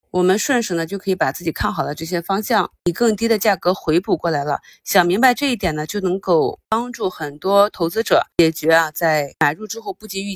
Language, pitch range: Chinese, 170-220 Hz